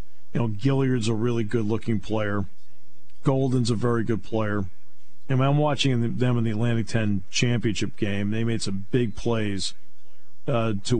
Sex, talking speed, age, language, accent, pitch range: male, 170 wpm, 50-69, English, American, 110-150 Hz